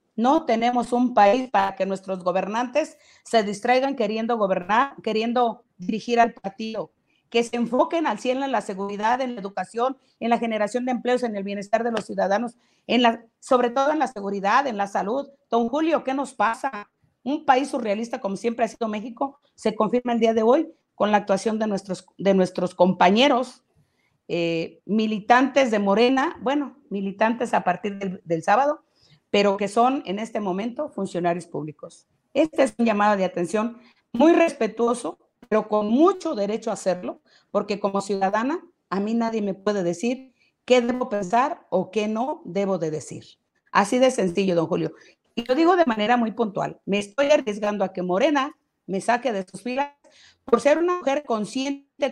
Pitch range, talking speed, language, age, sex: 200-255 Hz, 175 wpm, Spanish, 50-69, female